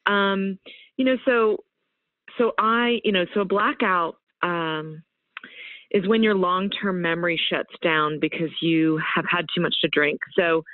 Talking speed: 160 wpm